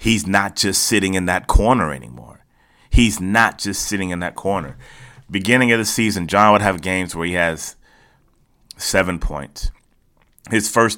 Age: 30-49